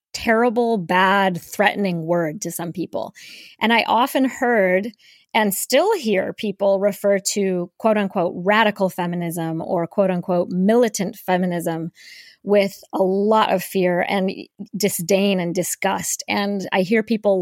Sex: female